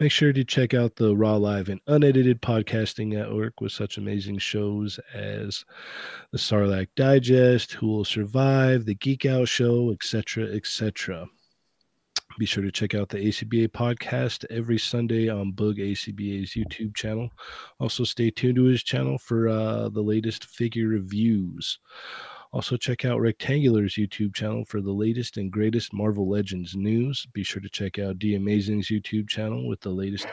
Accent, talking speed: American, 160 wpm